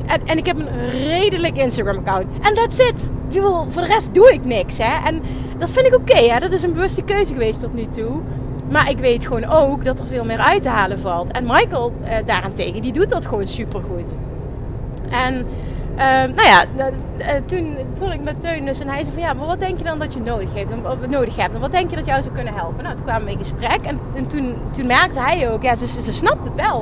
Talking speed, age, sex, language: 240 wpm, 30-49, female, Dutch